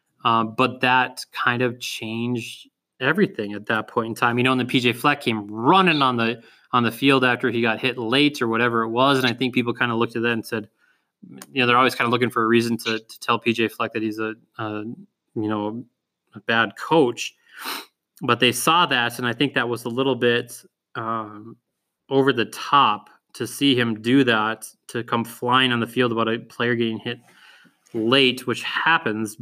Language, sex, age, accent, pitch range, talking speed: English, male, 20-39, American, 115-130 Hz, 210 wpm